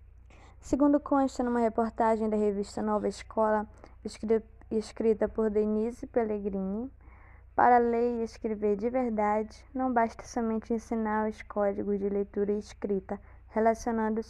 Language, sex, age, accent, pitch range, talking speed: Portuguese, female, 10-29, Brazilian, 205-240 Hz, 125 wpm